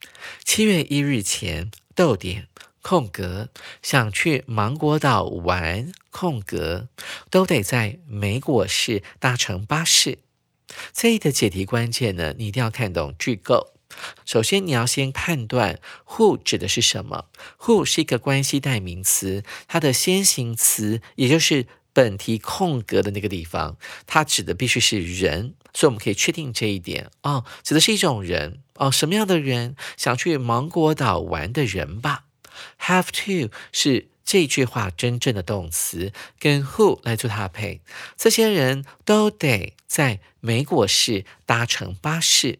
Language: Chinese